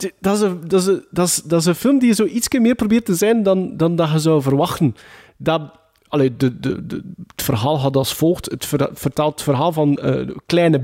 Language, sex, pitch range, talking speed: Dutch, male, 145-205 Hz, 250 wpm